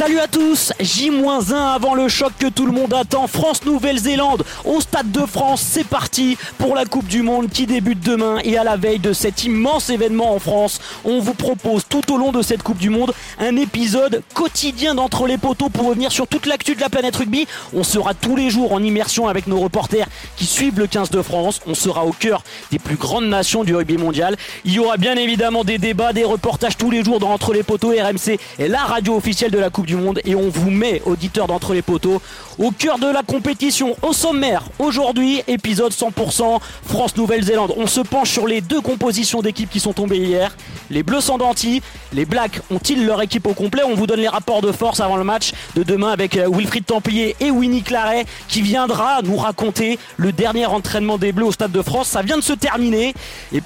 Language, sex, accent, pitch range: French, male, French, 200-255 Hz